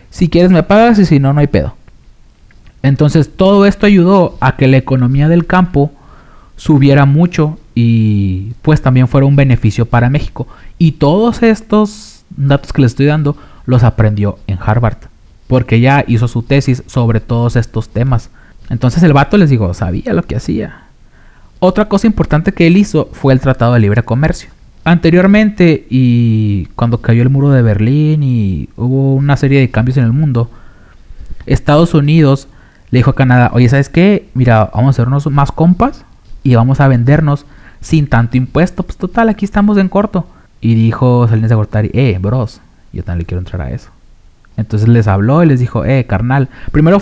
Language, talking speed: English, 175 wpm